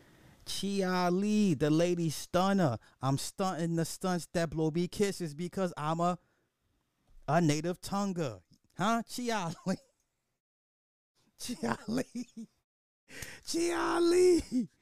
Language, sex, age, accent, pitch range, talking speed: English, male, 30-49, American, 115-175 Hz, 105 wpm